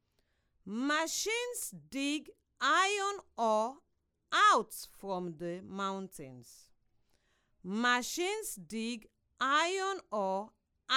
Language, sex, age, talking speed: English, female, 50-69, 65 wpm